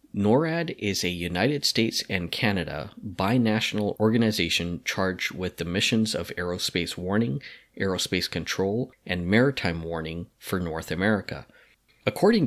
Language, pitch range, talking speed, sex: English, 90-110 Hz, 120 wpm, male